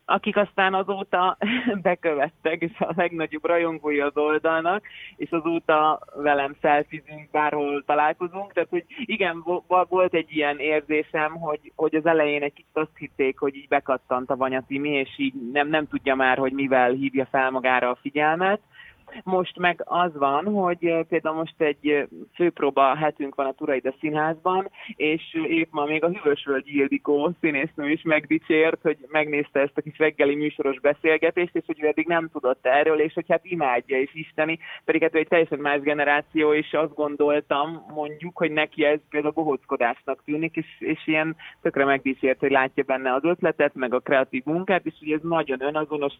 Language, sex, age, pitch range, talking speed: Hungarian, male, 20-39, 145-165 Hz, 170 wpm